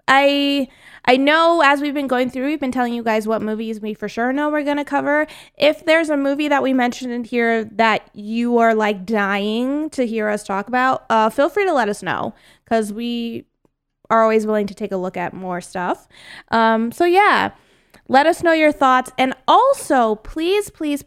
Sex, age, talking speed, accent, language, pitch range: female, 20-39, 210 wpm, American, English, 205-265 Hz